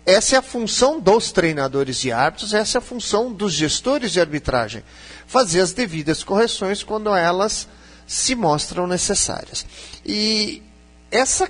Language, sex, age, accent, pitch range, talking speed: Portuguese, male, 50-69, Brazilian, 140-205 Hz, 140 wpm